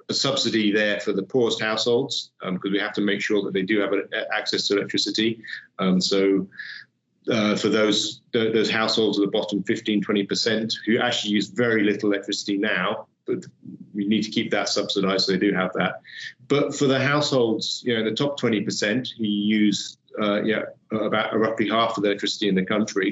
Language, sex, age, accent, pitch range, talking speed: English, male, 30-49, British, 100-110 Hz, 200 wpm